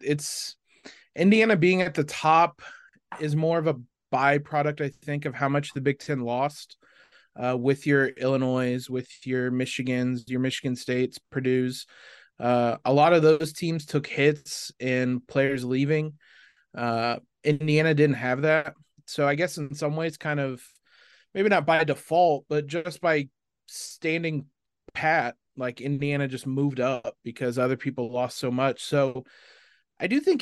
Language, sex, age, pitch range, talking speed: English, male, 20-39, 135-160 Hz, 155 wpm